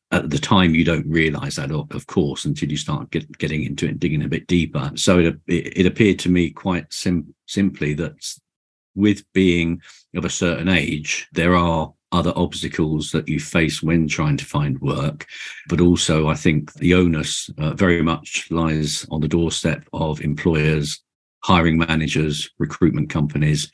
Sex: male